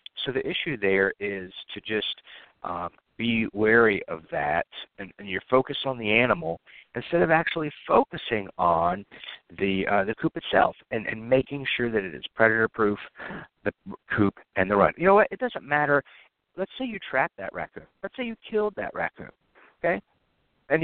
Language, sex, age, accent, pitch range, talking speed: English, male, 50-69, American, 105-145 Hz, 180 wpm